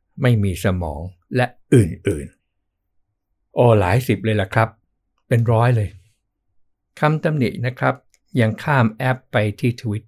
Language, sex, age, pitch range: Thai, male, 60-79, 100-125 Hz